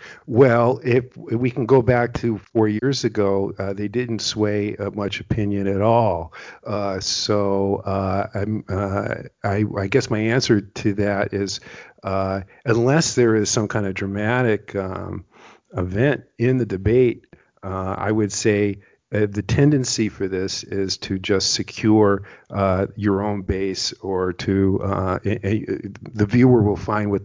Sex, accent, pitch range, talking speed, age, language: male, American, 100-115 Hz, 160 wpm, 50-69, English